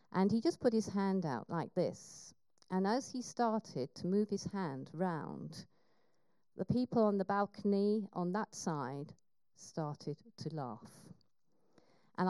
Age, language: 50-69, English